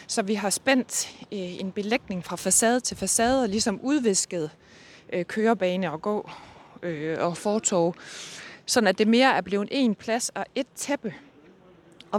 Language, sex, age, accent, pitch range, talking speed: Danish, female, 20-39, native, 185-240 Hz, 150 wpm